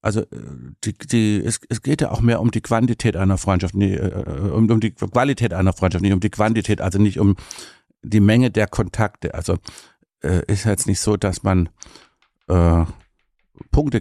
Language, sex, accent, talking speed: German, male, German, 175 wpm